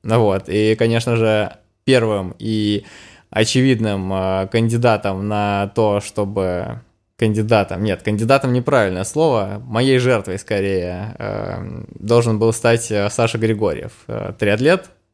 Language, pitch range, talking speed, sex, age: Russian, 105-120 Hz, 105 wpm, male, 20-39